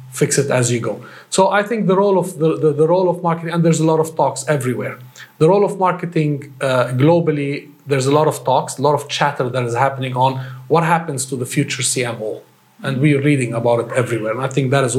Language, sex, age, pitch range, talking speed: English, male, 40-59, 130-150 Hz, 245 wpm